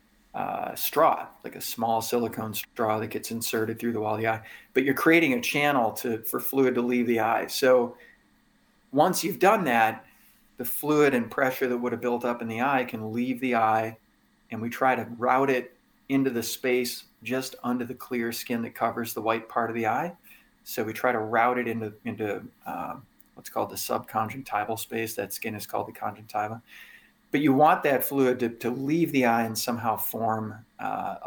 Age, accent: 40-59, American